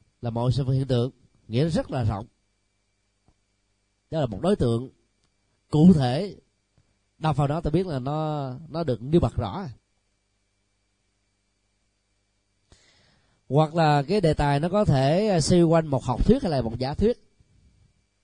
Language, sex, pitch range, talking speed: Vietnamese, male, 100-150 Hz, 150 wpm